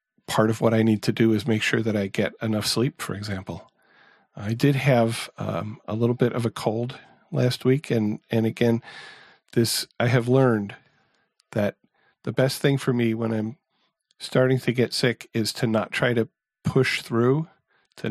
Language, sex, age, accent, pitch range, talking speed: English, male, 40-59, American, 110-130 Hz, 185 wpm